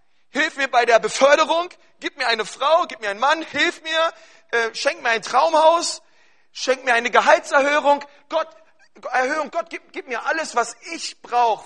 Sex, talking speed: male, 175 wpm